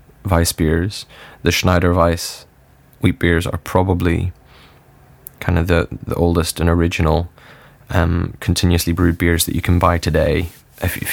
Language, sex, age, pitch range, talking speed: English, male, 20-39, 85-95 Hz, 150 wpm